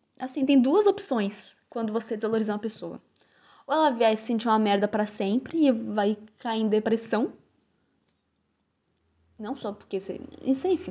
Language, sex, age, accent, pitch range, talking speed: Portuguese, female, 10-29, Brazilian, 225-365 Hz, 155 wpm